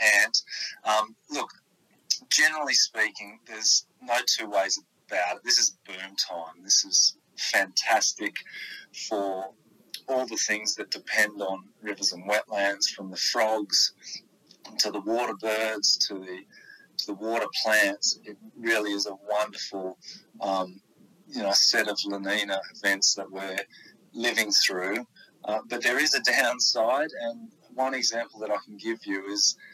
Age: 30-49